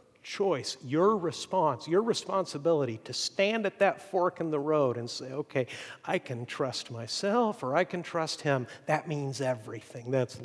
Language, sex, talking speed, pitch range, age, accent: English, male, 165 wpm, 120-155 Hz, 50-69, American